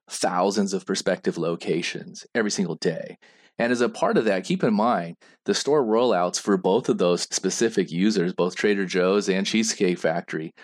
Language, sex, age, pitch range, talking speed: English, male, 30-49, 95-120 Hz, 175 wpm